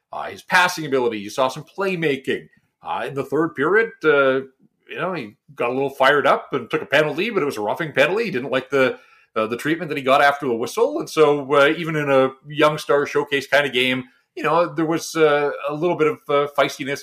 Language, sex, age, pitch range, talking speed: English, male, 40-59, 135-165 Hz, 235 wpm